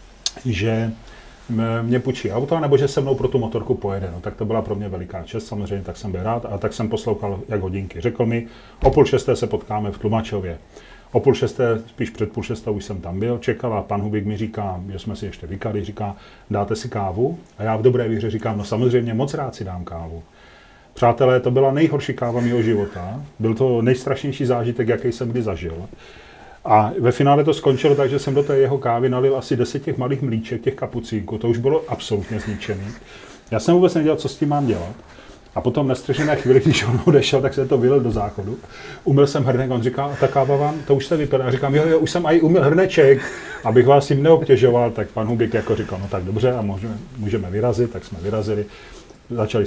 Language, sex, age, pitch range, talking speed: Czech, male, 40-59, 105-135 Hz, 215 wpm